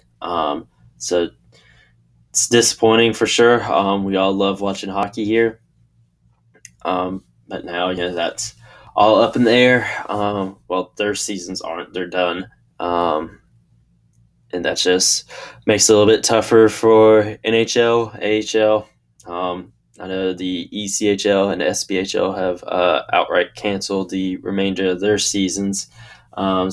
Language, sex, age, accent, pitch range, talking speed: English, male, 10-29, American, 90-105 Hz, 140 wpm